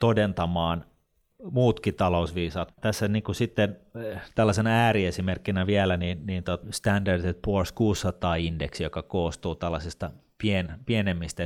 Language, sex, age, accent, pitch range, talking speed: Finnish, male, 30-49, native, 85-100 Hz, 105 wpm